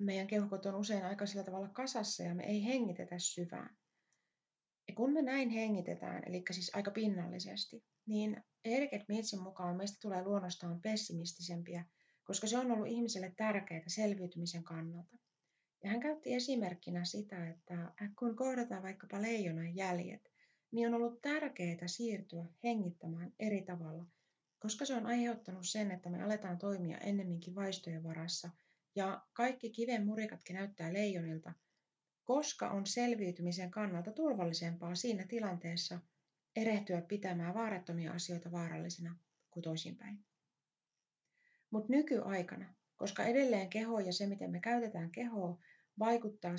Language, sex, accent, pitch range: Finnish, female, native, 175-225 Hz